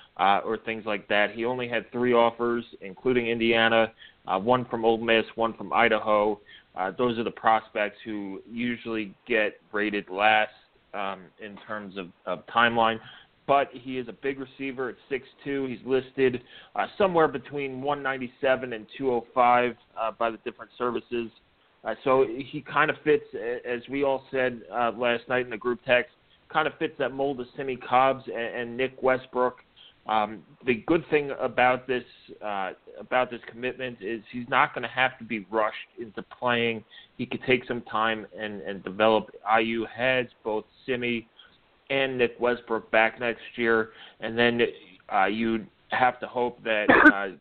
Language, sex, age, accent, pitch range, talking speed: English, male, 30-49, American, 110-125 Hz, 170 wpm